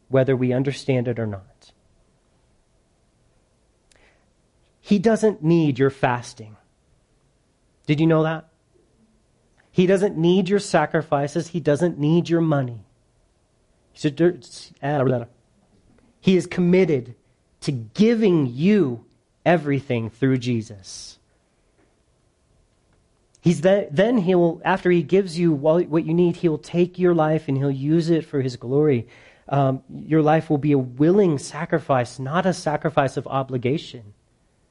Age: 40-59